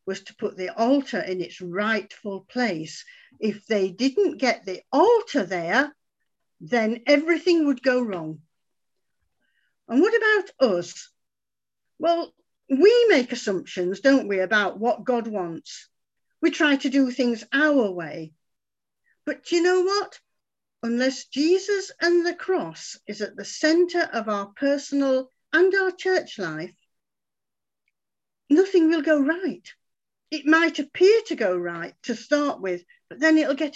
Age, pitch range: 50-69, 200-320 Hz